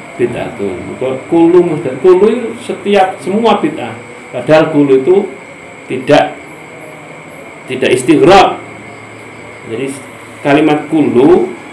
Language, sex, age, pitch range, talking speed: English, male, 50-69, 125-195 Hz, 70 wpm